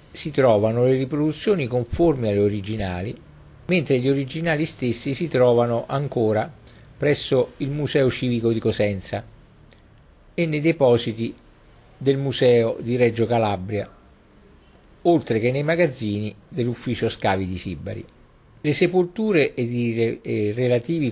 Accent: native